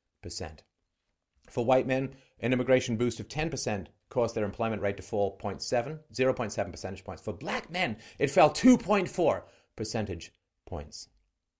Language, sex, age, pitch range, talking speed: English, male, 40-59, 100-130 Hz, 145 wpm